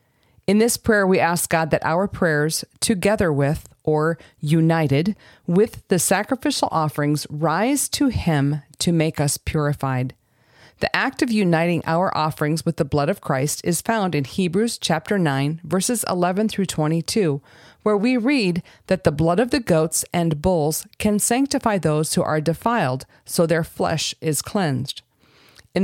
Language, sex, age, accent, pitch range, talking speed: English, female, 40-59, American, 145-190 Hz, 160 wpm